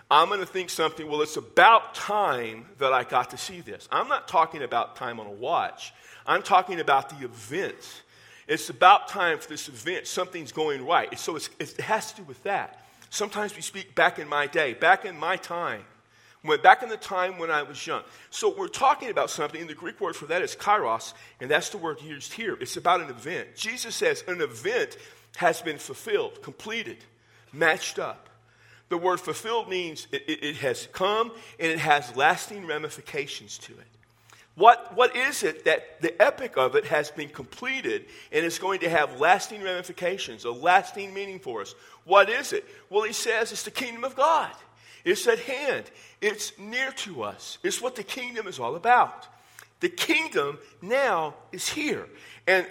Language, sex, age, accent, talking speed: English, male, 40-59, American, 190 wpm